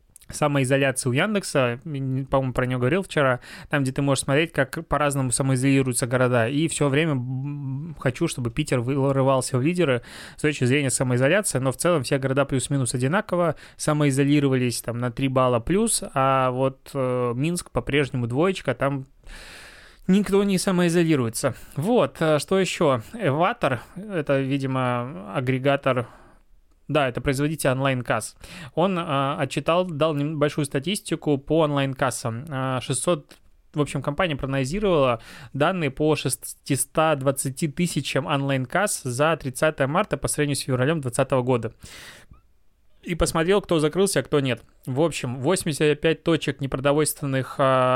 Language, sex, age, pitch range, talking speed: Russian, male, 20-39, 130-160 Hz, 130 wpm